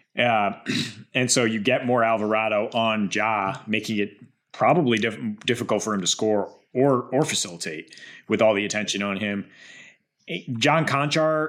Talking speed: 155 wpm